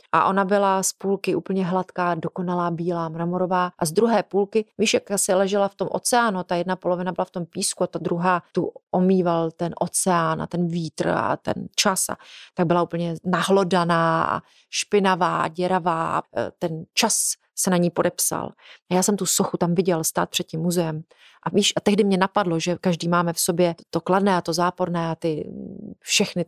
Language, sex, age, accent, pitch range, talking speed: Czech, female, 30-49, native, 170-195 Hz, 190 wpm